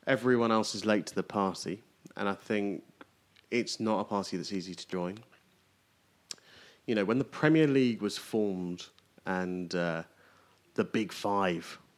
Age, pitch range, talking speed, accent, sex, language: 30-49, 90-105 Hz, 155 wpm, British, male, English